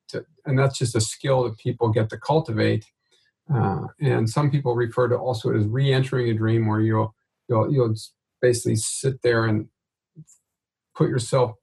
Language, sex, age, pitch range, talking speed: English, male, 40-59, 115-135 Hz, 175 wpm